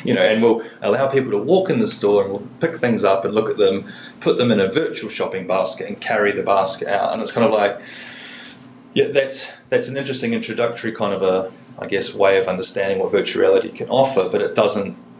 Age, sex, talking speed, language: 30-49, male, 235 wpm, English